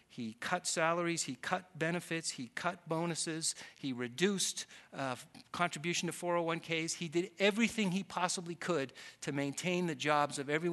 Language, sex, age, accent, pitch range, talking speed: English, male, 50-69, American, 130-165 Hz, 150 wpm